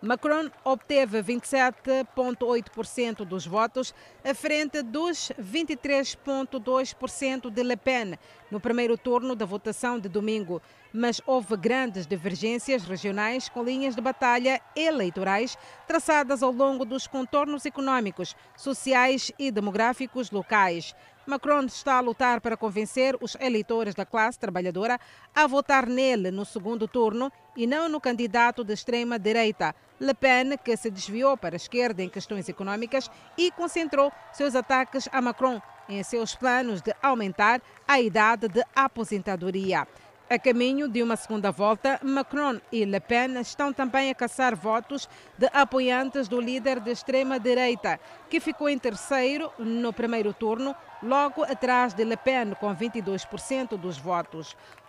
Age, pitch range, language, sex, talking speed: 40-59, 220-270 Hz, Portuguese, female, 135 wpm